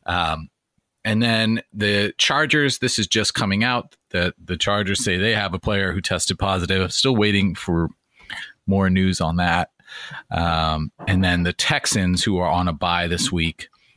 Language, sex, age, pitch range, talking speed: English, male, 30-49, 85-105 Hz, 175 wpm